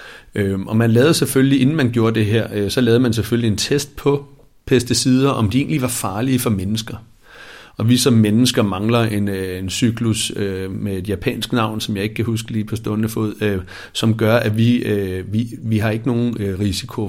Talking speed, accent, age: 190 wpm, native, 60-79